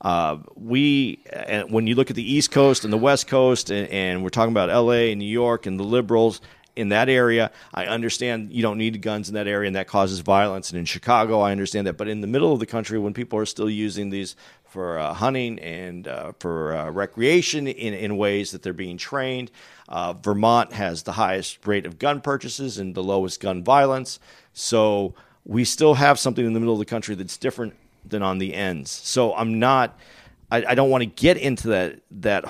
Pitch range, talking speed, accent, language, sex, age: 100-125 Hz, 220 wpm, American, English, male, 40-59